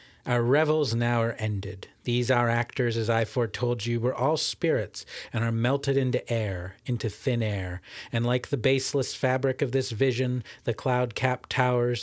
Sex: male